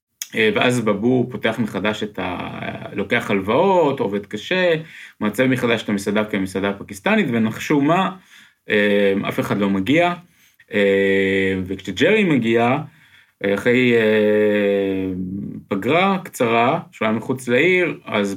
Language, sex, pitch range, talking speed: Hebrew, male, 100-130 Hz, 105 wpm